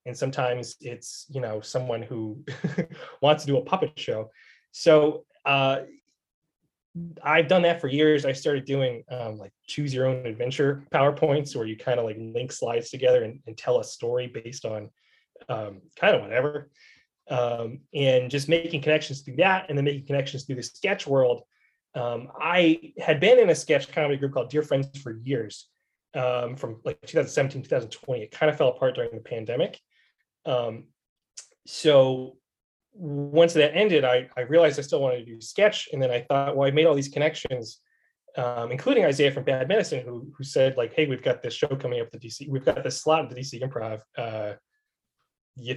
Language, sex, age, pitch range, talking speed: English, male, 20-39, 125-160 Hz, 185 wpm